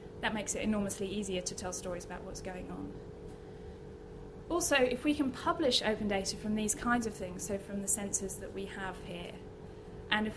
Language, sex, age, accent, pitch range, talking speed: English, female, 20-39, British, 195-235 Hz, 195 wpm